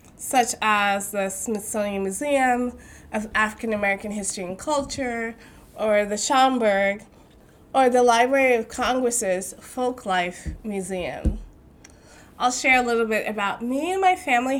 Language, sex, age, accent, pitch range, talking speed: English, female, 20-39, American, 195-240 Hz, 125 wpm